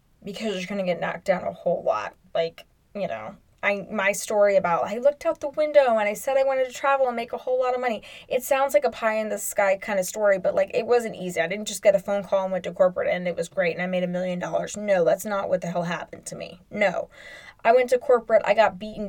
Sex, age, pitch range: female, 10-29, 190-255 Hz